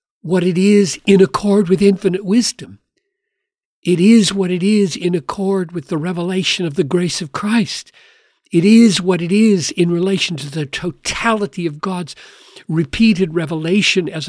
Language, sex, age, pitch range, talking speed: English, male, 60-79, 165-210 Hz, 160 wpm